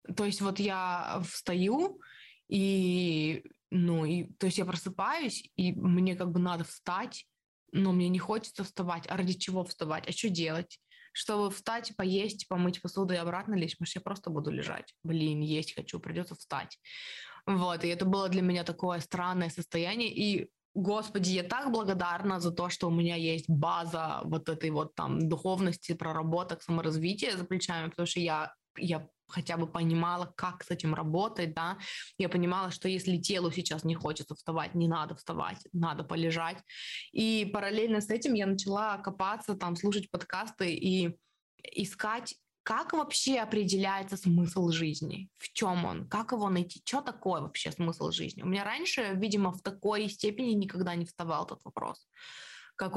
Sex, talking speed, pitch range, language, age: female, 165 wpm, 170-195 Hz, Russian, 20-39